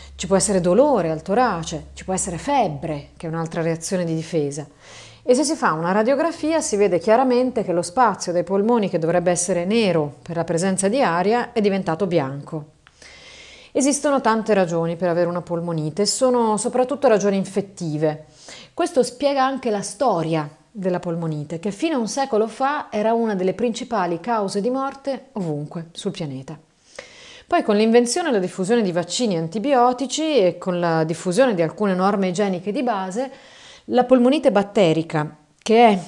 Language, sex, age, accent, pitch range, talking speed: Italian, female, 30-49, native, 170-235 Hz, 165 wpm